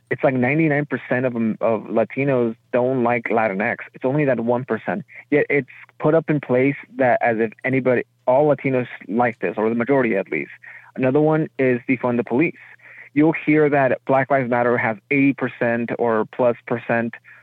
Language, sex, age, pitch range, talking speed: English, male, 30-49, 120-140 Hz, 170 wpm